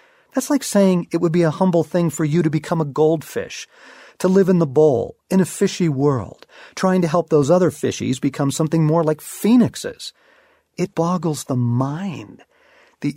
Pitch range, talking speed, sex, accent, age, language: 125-180 Hz, 180 wpm, male, American, 50-69, English